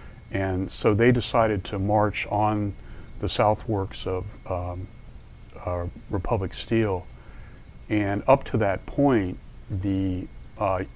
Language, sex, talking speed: English, male, 120 wpm